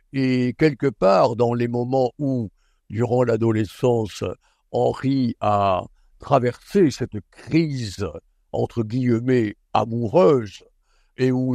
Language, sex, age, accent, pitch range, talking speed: French, male, 60-79, French, 115-140 Hz, 100 wpm